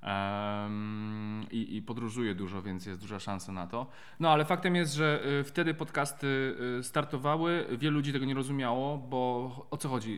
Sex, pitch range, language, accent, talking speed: male, 110-150 Hz, Polish, native, 160 wpm